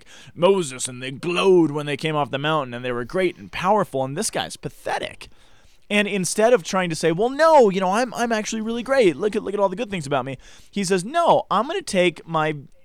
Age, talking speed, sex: 20-39, 245 wpm, male